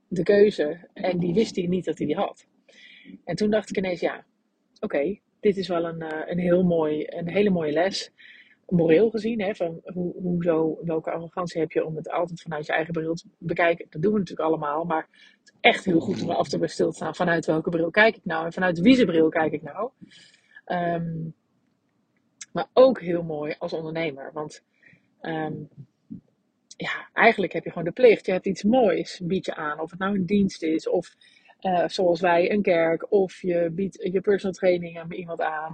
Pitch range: 165-200 Hz